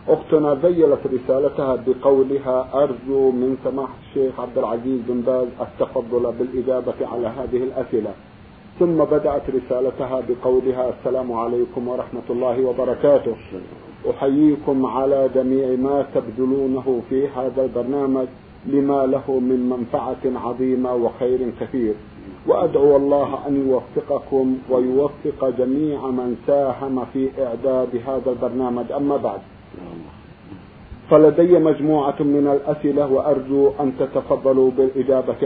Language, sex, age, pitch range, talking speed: Arabic, male, 50-69, 125-145 Hz, 105 wpm